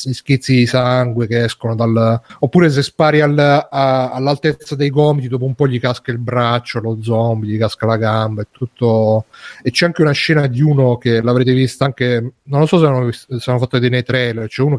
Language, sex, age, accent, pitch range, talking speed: Italian, male, 30-49, native, 125-150 Hz, 210 wpm